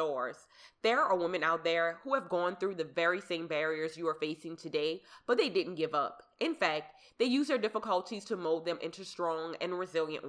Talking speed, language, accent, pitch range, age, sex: 205 wpm, English, American, 165-225 Hz, 20-39, female